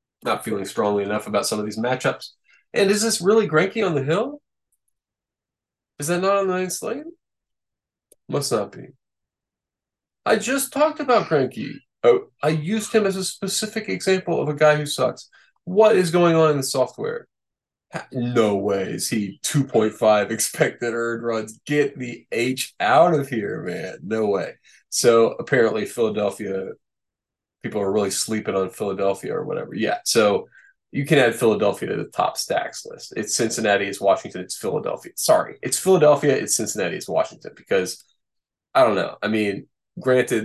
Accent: American